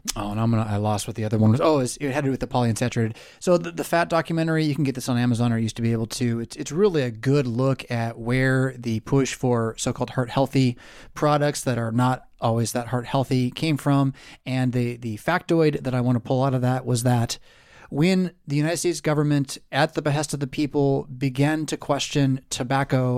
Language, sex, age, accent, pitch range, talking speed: English, male, 30-49, American, 120-145 Hz, 235 wpm